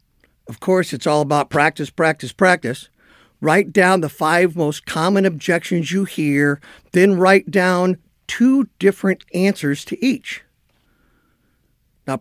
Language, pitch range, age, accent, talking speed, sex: English, 150-195 Hz, 50-69, American, 130 wpm, male